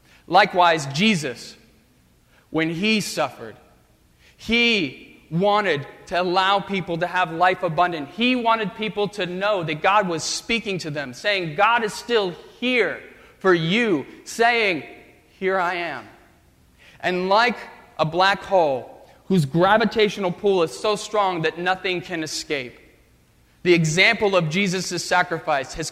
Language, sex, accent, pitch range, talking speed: English, male, American, 165-210 Hz, 130 wpm